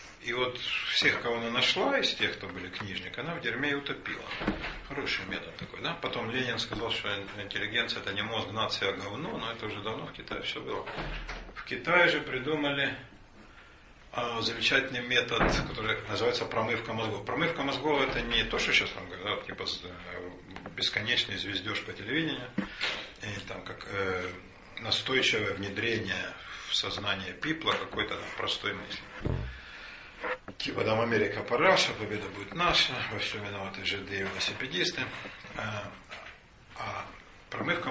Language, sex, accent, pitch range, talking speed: Russian, male, native, 100-125 Hz, 140 wpm